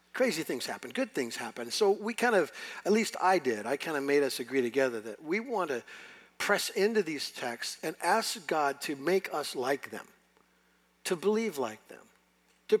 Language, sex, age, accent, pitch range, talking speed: English, male, 60-79, American, 130-205 Hz, 195 wpm